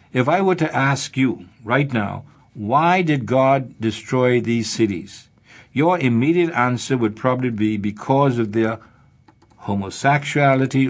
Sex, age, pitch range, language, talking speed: male, 60-79, 115-150 Hz, English, 130 wpm